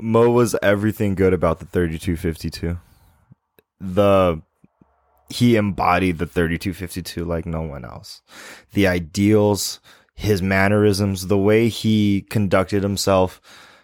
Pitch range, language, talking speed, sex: 90-105 Hz, English, 110 wpm, male